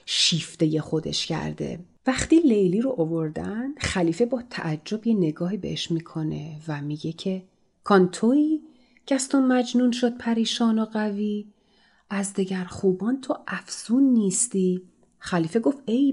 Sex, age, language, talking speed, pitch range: female, 30-49, Persian, 125 wpm, 185-250 Hz